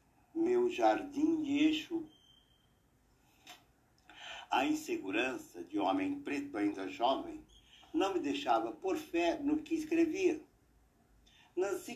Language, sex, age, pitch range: Portuguese, male, 60-79, 305-355 Hz